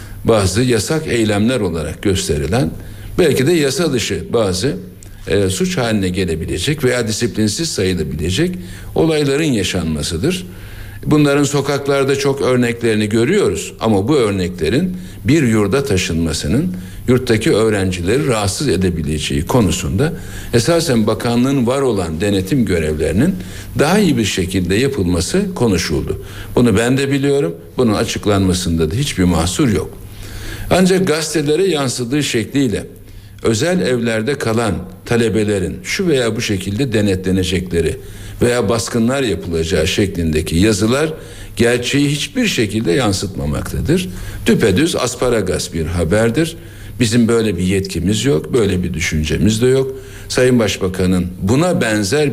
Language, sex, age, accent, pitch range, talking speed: Turkish, male, 60-79, native, 95-125 Hz, 110 wpm